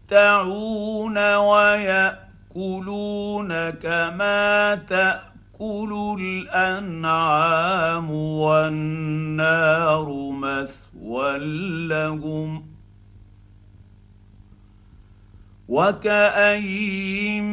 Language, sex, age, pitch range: Arabic, male, 50-69, 155-205 Hz